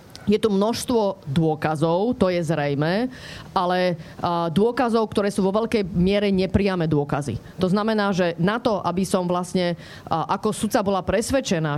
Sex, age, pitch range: female, 30-49, 175-215 Hz